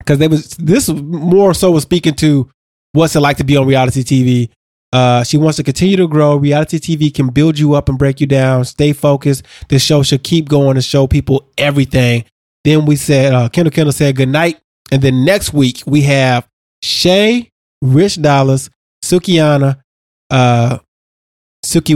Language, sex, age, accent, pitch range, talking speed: English, male, 20-39, American, 135-155 Hz, 175 wpm